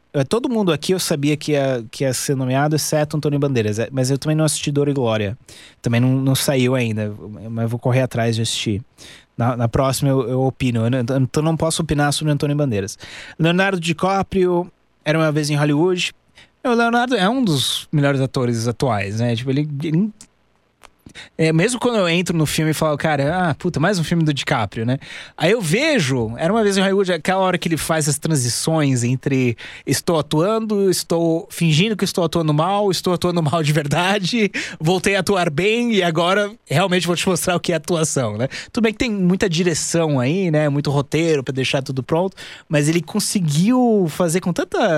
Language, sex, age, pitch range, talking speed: Portuguese, male, 20-39, 135-185 Hz, 195 wpm